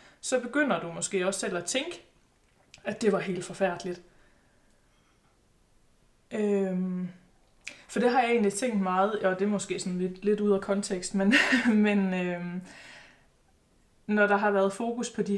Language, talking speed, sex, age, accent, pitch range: Danish, 150 wpm, female, 20-39, native, 185-210 Hz